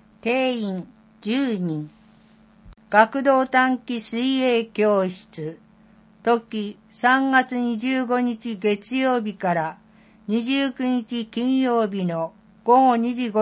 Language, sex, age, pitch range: Japanese, female, 60-79, 205-245 Hz